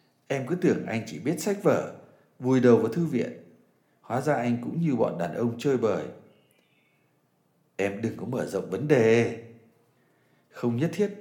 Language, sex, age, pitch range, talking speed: Vietnamese, male, 60-79, 105-140 Hz, 175 wpm